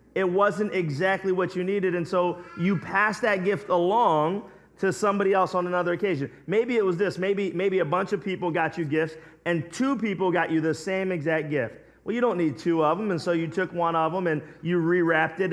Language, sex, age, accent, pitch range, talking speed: English, male, 30-49, American, 145-180 Hz, 225 wpm